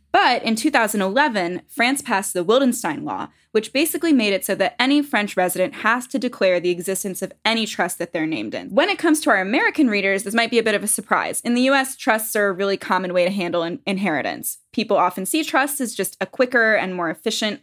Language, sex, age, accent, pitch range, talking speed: English, female, 10-29, American, 185-245 Hz, 230 wpm